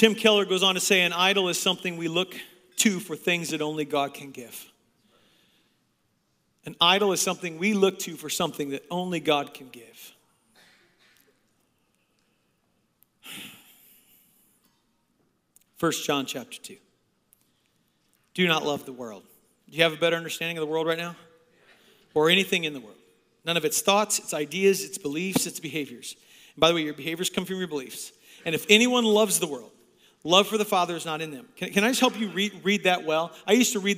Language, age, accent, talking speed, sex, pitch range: English, 40-59, American, 185 wpm, male, 165-215 Hz